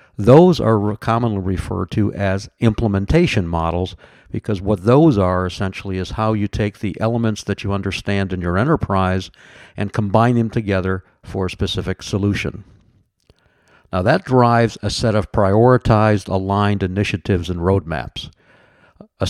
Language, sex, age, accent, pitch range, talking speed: English, male, 60-79, American, 95-115 Hz, 140 wpm